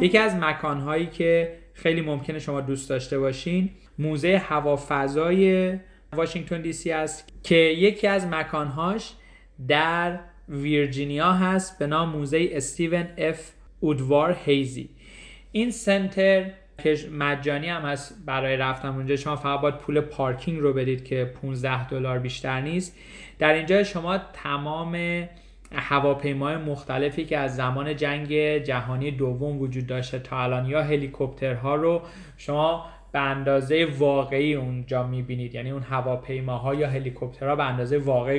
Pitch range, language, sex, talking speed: 135-165 Hz, Persian, male, 130 wpm